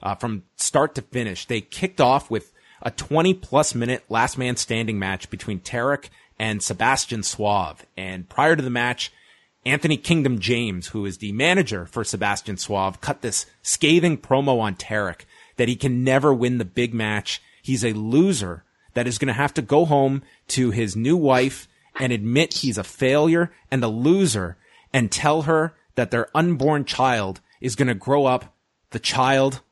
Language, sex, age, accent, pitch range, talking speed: English, male, 30-49, American, 105-140 Hz, 175 wpm